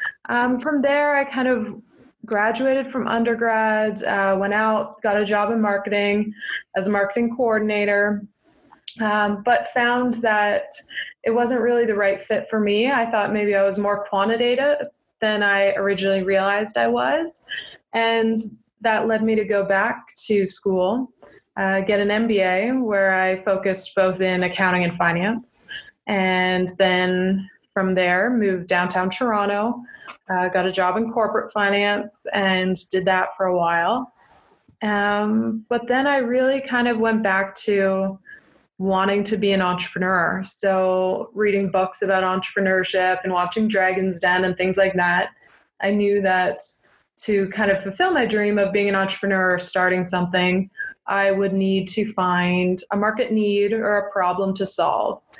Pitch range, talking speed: 190-225 Hz, 155 wpm